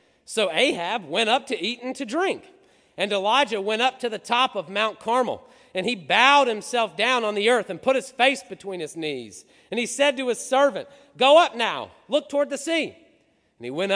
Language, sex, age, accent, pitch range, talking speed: English, male, 40-59, American, 195-270 Hz, 215 wpm